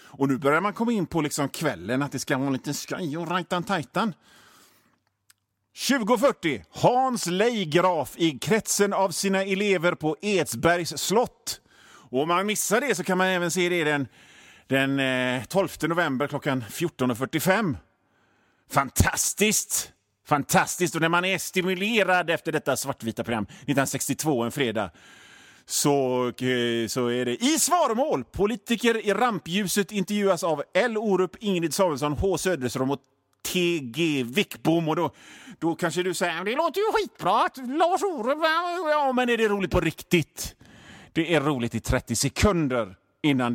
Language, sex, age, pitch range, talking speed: Swedish, male, 30-49, 130-195 Hz, 150 wpm